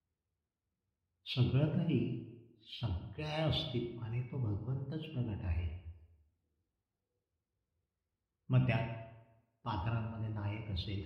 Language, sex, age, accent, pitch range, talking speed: Marathi, male, 60-79, native, 95-130 Hz, 60 wpm